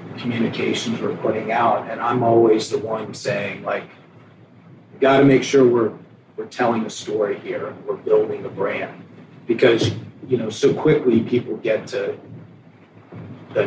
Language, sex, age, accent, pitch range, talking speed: English, male, 40-59, American, 130-175 Hz, 145 wpm